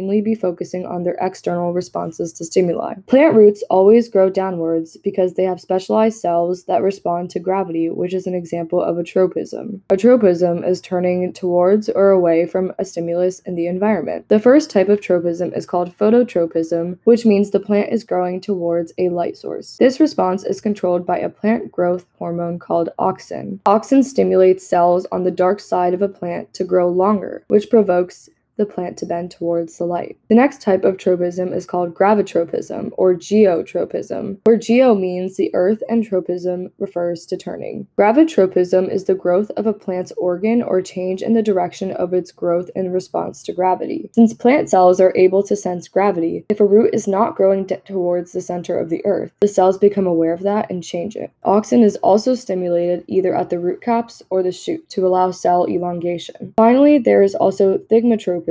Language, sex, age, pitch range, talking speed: English, female, 20-39, 175-210 Hz, 190 wpm